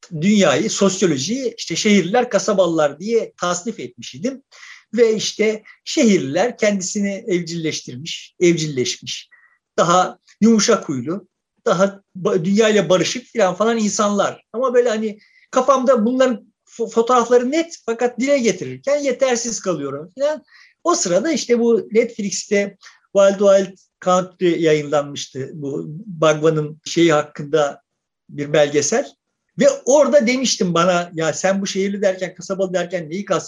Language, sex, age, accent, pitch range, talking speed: Turkish, male, 50-69, native, 170-235 Hz, 120 wpm